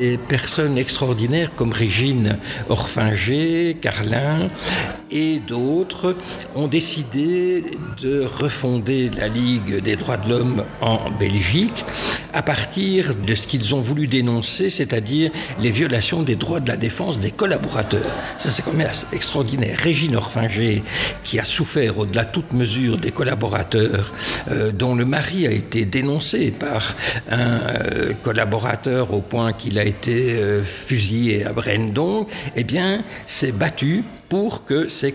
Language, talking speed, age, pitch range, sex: French, 145 wpm, 60-79, 110-145 Hz, male